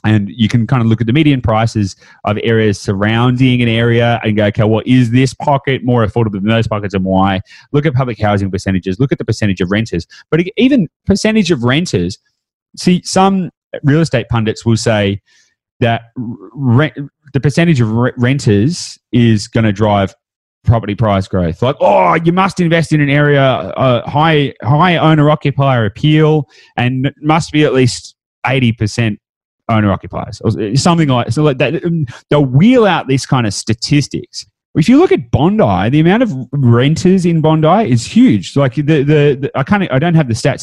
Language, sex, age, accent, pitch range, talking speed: English, male, 30-49, Australian, 115-170 Hz, 180 wpm